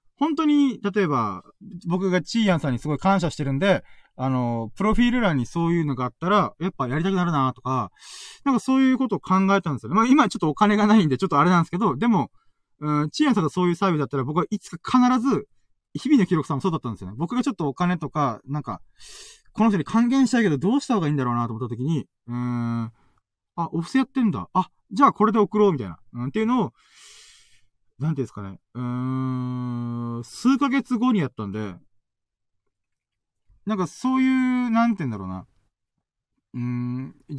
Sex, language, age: male, Japanese, 20-39